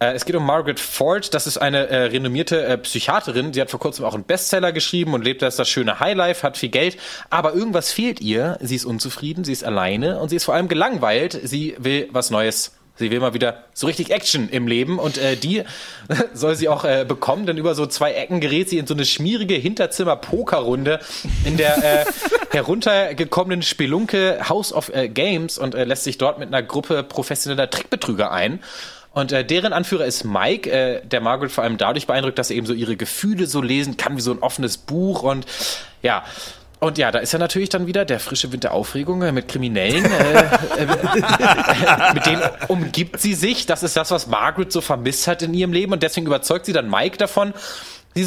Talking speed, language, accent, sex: 215 wpm, German, German, male